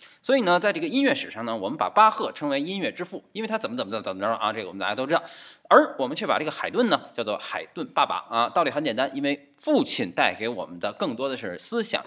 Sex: male